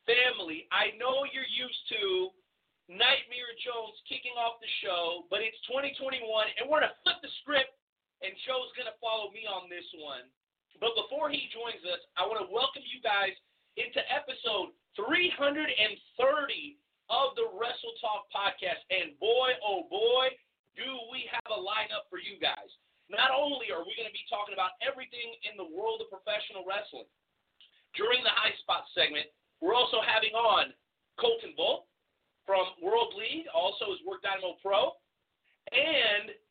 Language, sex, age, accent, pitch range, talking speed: English, male, 40-59, American, 205-275 Hz, 160 wpm